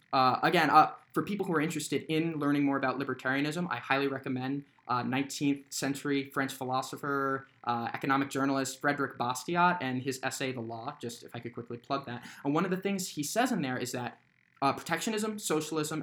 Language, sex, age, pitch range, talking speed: English, male, 20-39, 135-160 Hz, 195 wpm